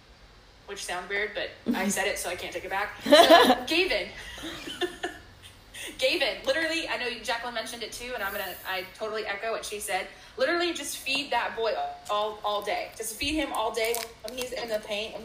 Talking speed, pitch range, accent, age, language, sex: 205 wpm, 210-280 Hz, American, 20-39, English, female